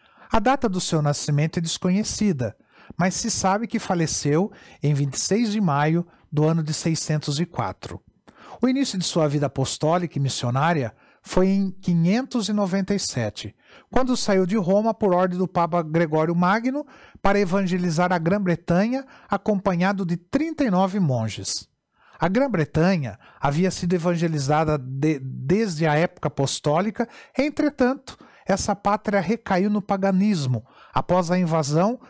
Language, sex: Portuguese, male